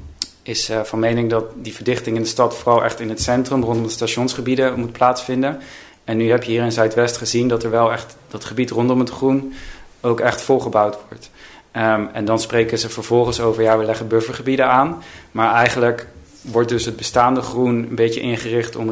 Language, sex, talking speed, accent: Dutch, male, 195 wpm, Dutch